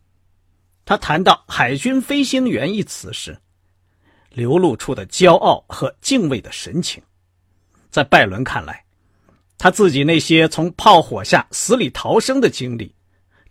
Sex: male